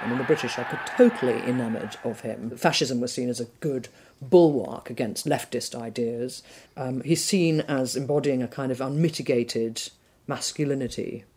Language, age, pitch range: English, 40-59, 130-160 Hz